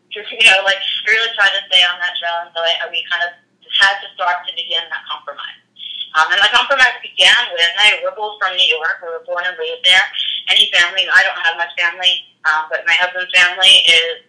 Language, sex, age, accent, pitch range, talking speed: English, female, 30-49, American, 170-200 Hz, 235 wpm